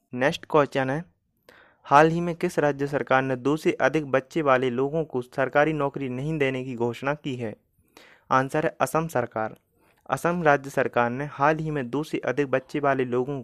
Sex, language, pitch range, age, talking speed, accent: male, Hindi, 130-155 Hz, 30-49, 190 wpm, native